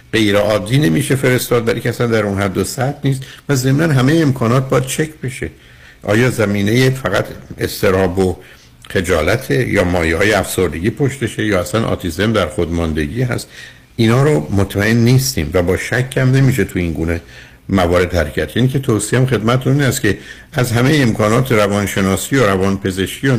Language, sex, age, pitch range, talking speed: Persian, male, 60-79, 105-135 Hz, 160 wpm